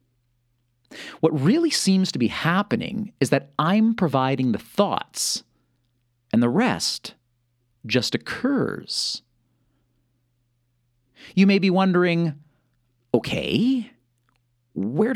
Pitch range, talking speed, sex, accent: 120-150 Hz, 90 wpm, male, American